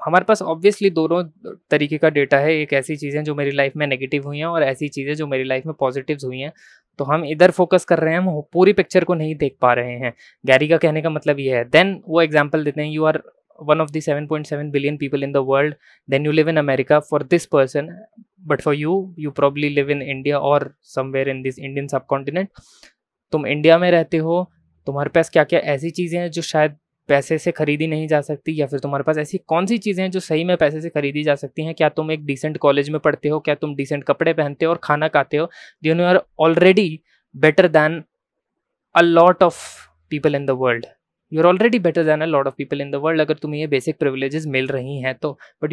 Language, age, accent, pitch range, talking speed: Hindi, 20-39, native, 140-165 Hz, 235 wpm